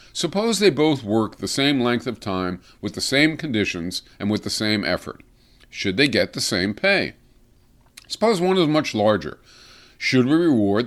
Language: English